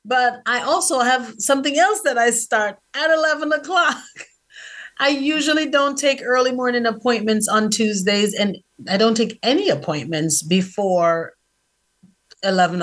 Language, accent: English, American